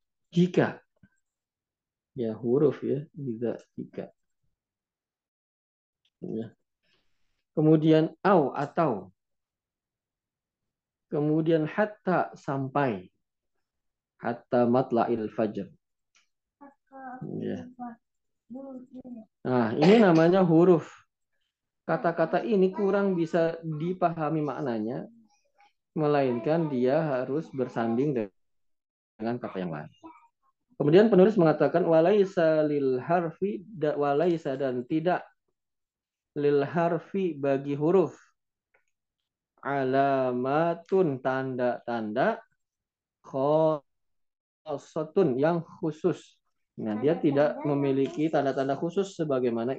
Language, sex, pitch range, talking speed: Indonesian, male, 125-175 Hz, 70 wpm